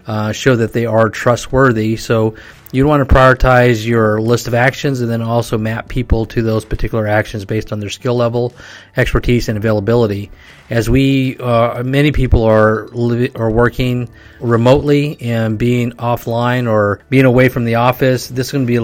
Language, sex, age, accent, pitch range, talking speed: English, male, 30-49, American, 110-125 Hz, 185 wpm